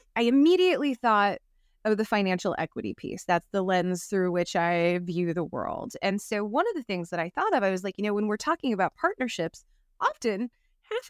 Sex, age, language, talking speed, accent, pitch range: female, 20-39, English, 210 wpm, American, 200-285 Hz